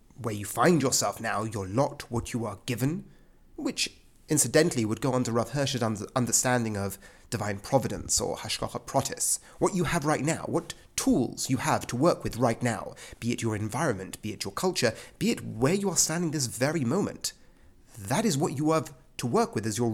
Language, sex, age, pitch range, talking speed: English, male, 30-49, 110-160 Hz, 200 wpm